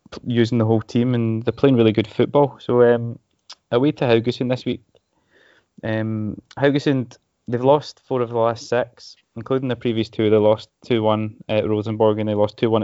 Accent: British